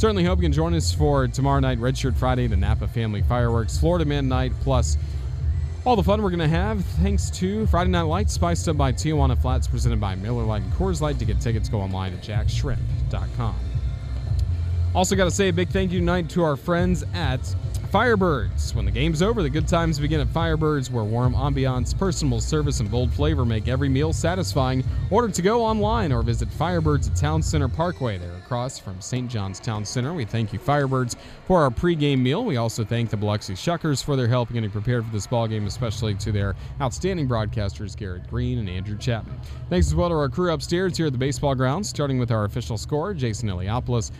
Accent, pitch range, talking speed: American, 95-130 Hz, 210 wpm